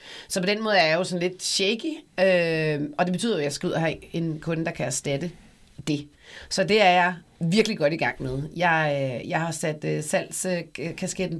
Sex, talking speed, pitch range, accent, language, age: female, 220 wpm, 145-185 Hz, native, Danish, 40-59